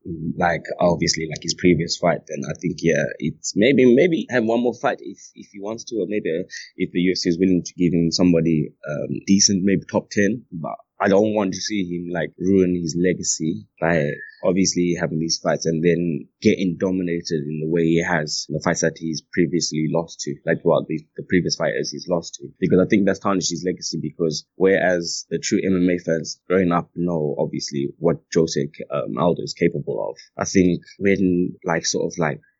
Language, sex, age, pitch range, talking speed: English, male, 20-39, 80-95 Hz, 205 wpm